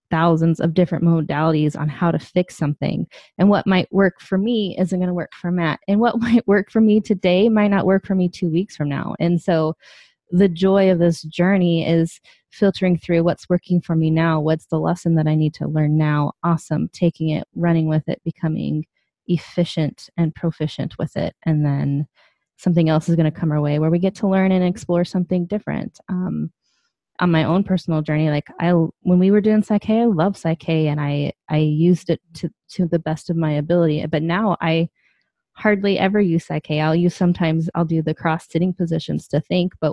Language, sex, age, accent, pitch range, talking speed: English, female, 20-39, American, 155-185 Hz, 205 wpm